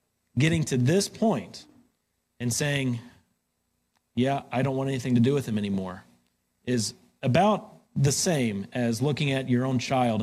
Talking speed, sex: 155 wpm, male